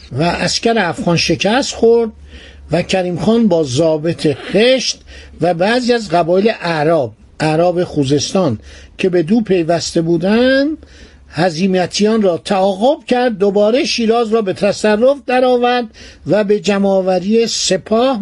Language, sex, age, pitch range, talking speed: Persian, male, 60-79, 165-225 Hz, 120 wpm